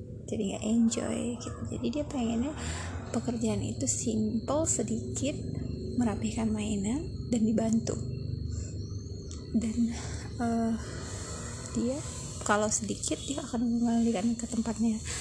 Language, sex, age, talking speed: Indonesian, female, 20-39, 95 wpm